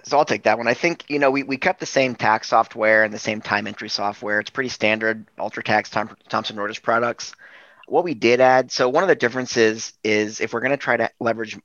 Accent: American